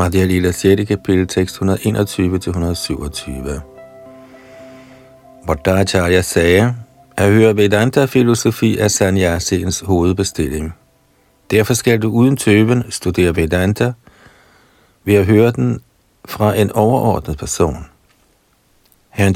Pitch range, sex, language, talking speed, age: 85-115 Hz, male, Danish, 90 wpm, 50-69